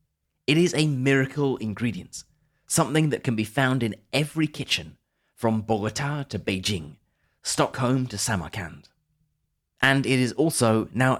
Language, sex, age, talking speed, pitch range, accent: English, male, 30-49, 135 wpm, 100-135 Hz, British